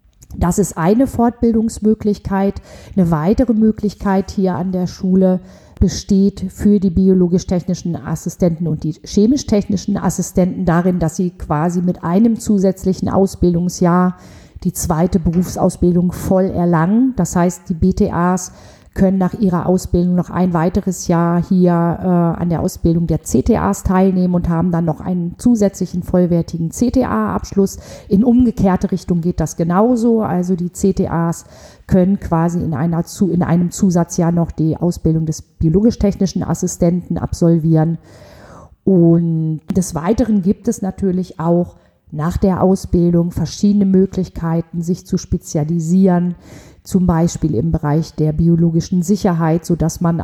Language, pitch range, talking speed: German, 165-190 Hz, 130 wpm